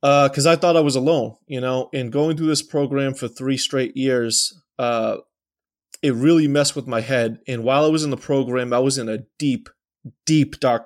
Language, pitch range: English, 125-150 Hz